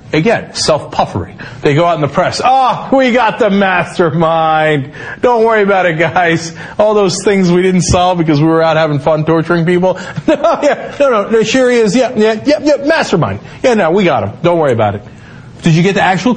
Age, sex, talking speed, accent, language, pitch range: 40-59, male, 230 wpm, American, English, 125-180 Hz